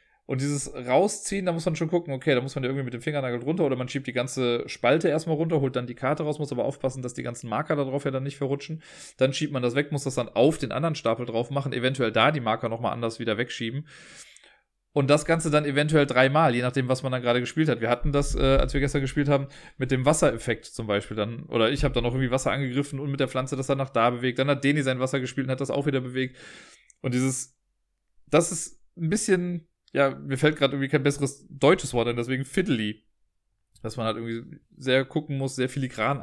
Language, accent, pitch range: German, German, 120-145 Hz